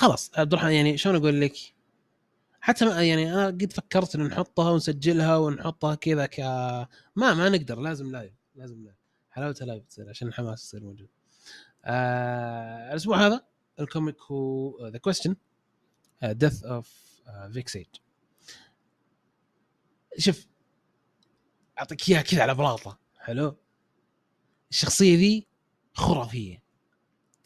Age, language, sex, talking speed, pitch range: 20-39, Arabic, male, 115 wpm, 125-175 Hz